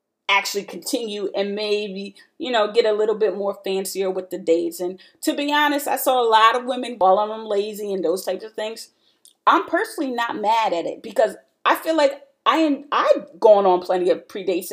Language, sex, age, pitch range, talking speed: English, female, 30-49, 190-270 Hz, 210 wpm